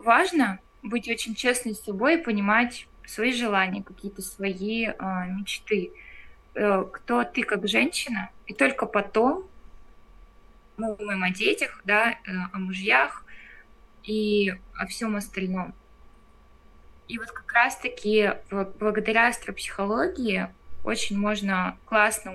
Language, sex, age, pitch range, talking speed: Russian, female, 20-39, 195-235 Hz, 115 wpm